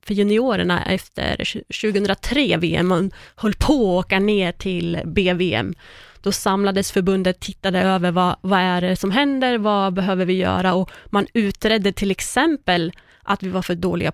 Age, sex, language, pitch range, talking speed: 20-39, female, English, 185-215 Hz, 155 wpm